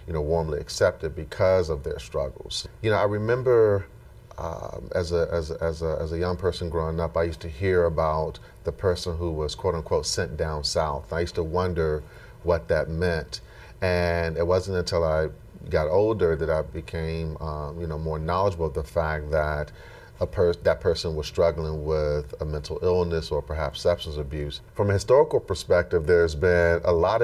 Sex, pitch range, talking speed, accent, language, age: male, 80-90 Hz, 185 wpm, American, English, 40-59